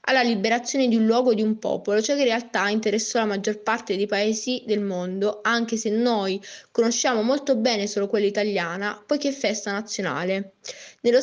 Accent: native